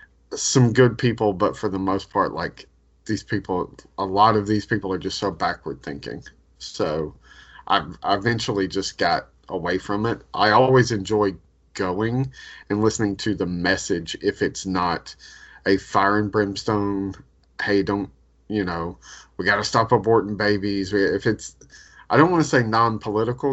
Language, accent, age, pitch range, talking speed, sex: English, American, 30-49, 95-115 Hz, 165 wpm, male